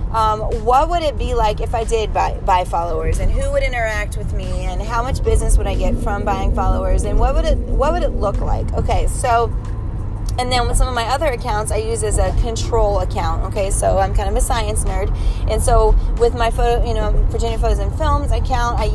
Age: 20-39